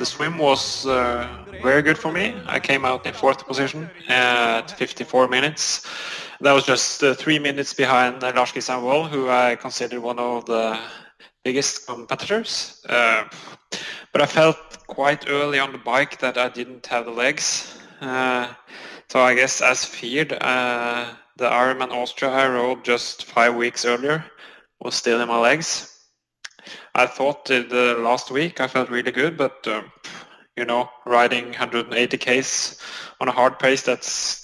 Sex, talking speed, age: male, 155 wpm, 20-39